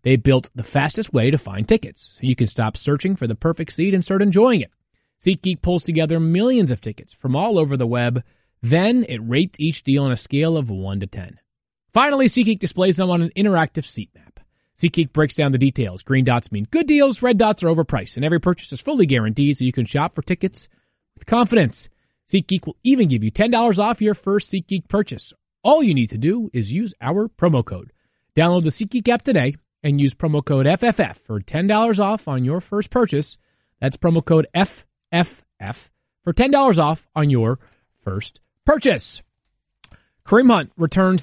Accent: American